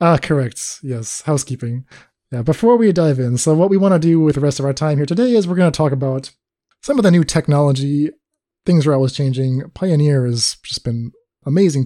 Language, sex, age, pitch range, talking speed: English, male, 20-39, 130-175 Hz, 225 wpm